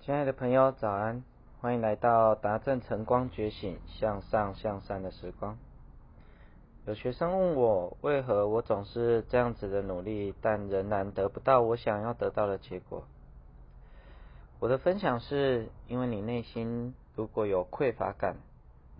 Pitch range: 95-120 Hz